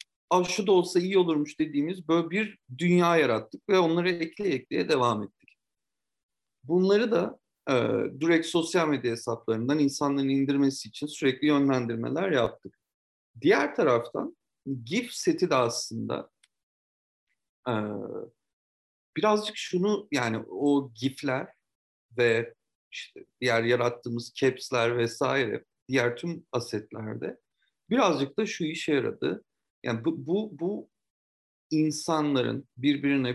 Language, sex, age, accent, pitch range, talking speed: Turkish, male, 50-69, native, 120-160 Hz, 110 wpm